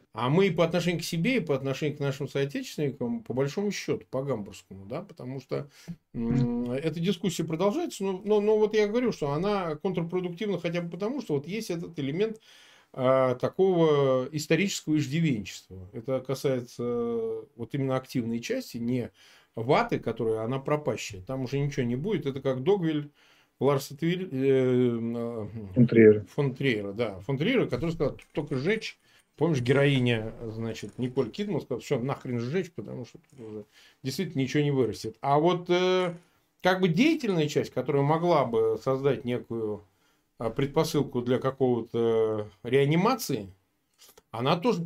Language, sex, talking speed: Russian, male, 155 wpm